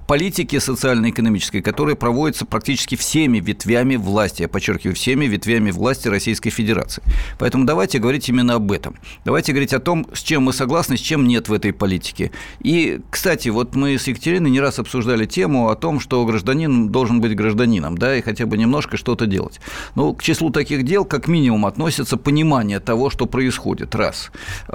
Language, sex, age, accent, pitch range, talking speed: Russian, male, 50-69, native, 110-140 Hz, 175 wpm